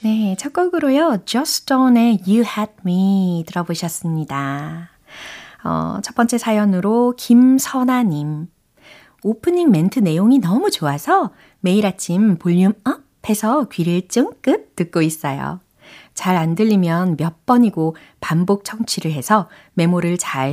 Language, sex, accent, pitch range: Korean, female, native, 160-230 Hz